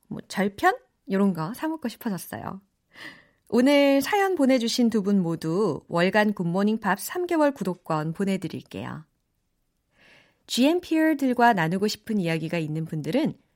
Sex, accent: female, native